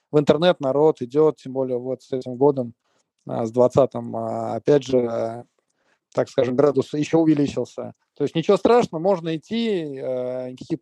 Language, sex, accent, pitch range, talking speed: Russian, male, native, 130-160 Hz, 145 wpm